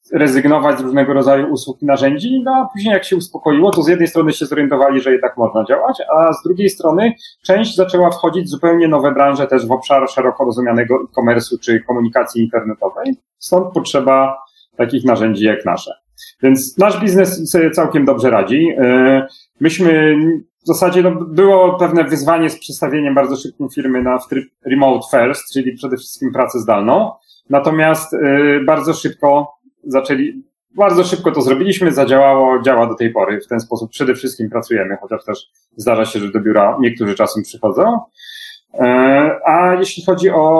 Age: 40-59